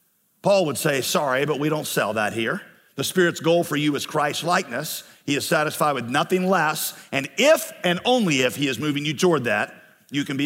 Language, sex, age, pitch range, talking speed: English, male, 50-69, 145-185 Hz, 220 wpm